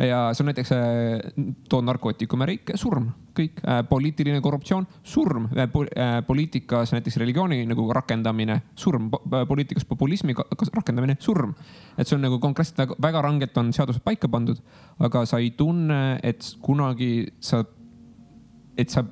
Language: English